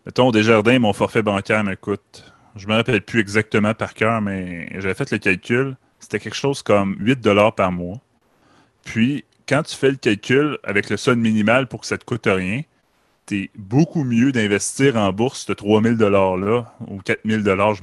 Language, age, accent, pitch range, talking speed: French, 30-49, Canadian, 95-120 Hz, 190 wpm